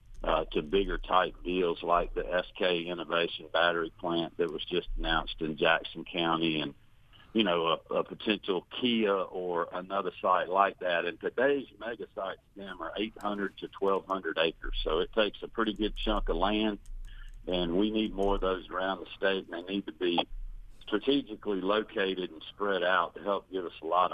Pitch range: 90-105 Hz